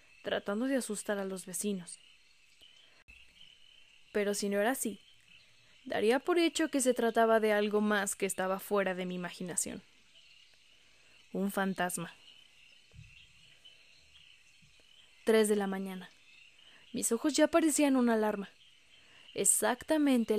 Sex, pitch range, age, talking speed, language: female, 190-230 Hz, 20-39, 115 wpm, Spanish